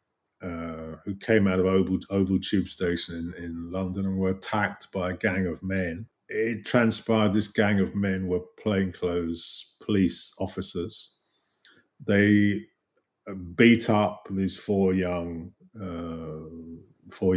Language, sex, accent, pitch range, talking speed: English, male, British, 90-110 Hz, 130 wpm